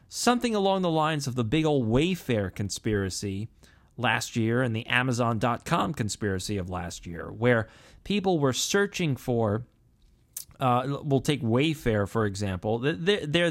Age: 30-49